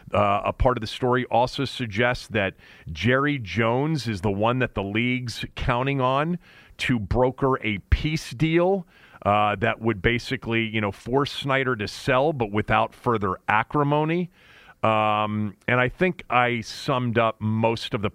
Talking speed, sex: 160 wpm, male